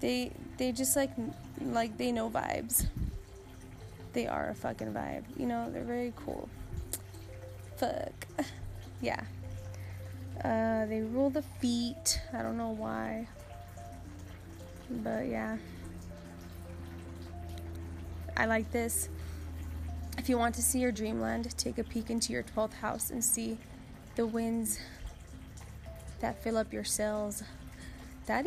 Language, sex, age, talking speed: English, female, 10-29, 120 wpm